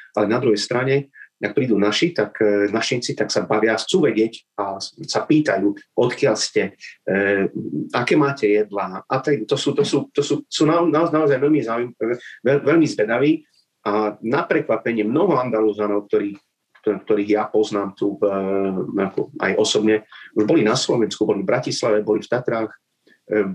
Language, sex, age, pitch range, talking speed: Slovak, male, 30-49, 105-120 Hz, 165 wpm